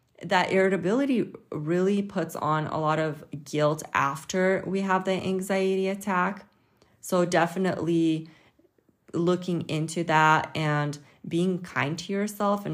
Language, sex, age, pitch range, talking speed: English, female, 30-49, 155-190 Hz, 125 wpm